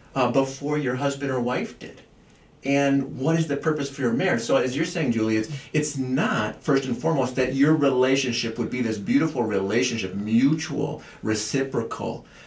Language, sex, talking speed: English, male, 175 wpm